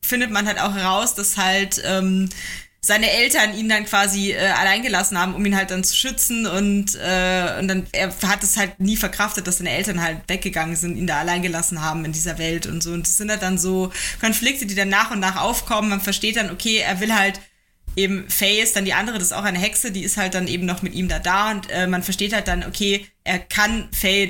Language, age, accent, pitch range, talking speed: German, 20-39, German, 180-205 Hz, 240 wpm